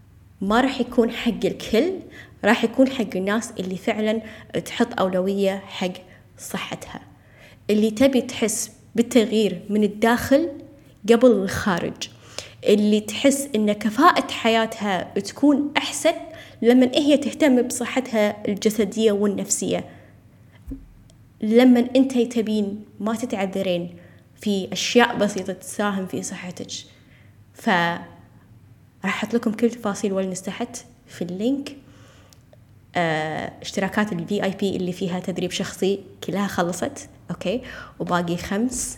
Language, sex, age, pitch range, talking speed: Arabic, female, 20-39, 180-235 Hz, 110 wpm